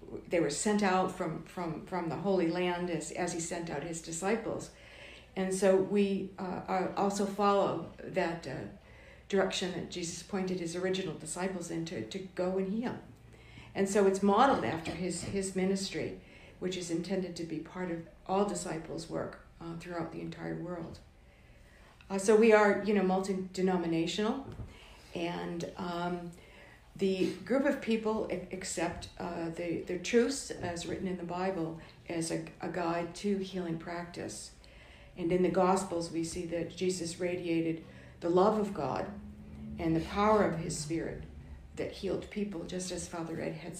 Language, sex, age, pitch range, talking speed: English, female, 60-79, 165-190 Hz, 165 wpm